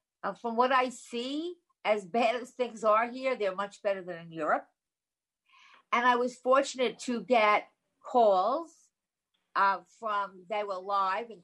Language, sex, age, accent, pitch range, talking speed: English, female, 50-69, American, 200-275 Hz, 155 wpm